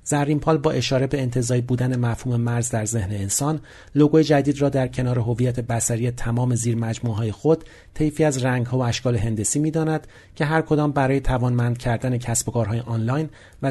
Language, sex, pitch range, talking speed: Persian, male, 115-150 Hz, 175 wpm